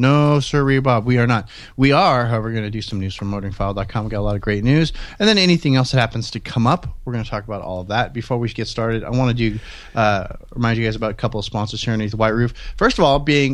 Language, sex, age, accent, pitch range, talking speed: English, male, 30-49, American, 110-140 Hz, 290 wpm